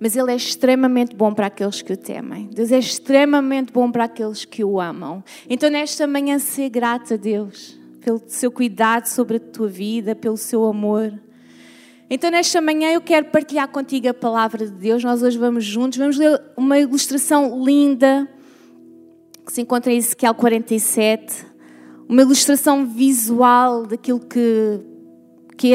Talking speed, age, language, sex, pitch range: 160 wpm, 20-39, Portuguese, female, 215-260 Hz